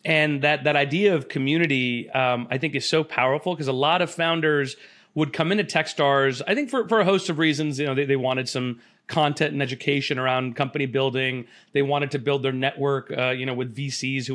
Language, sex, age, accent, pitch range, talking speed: English, male, 30-49, American, 135-160 Hz, 220 wpm